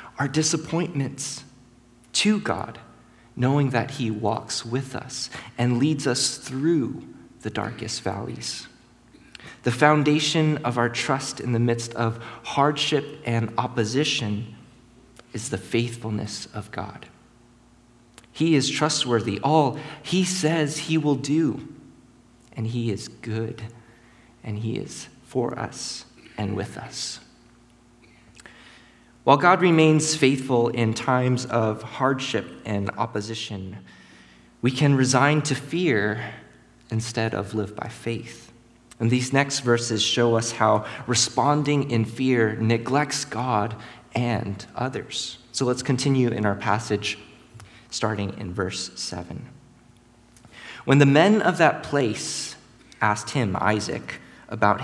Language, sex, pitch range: English, male, 110-135 Hz